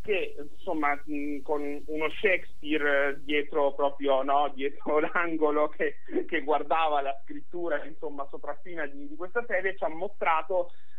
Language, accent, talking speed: Italian, native, 130 wpm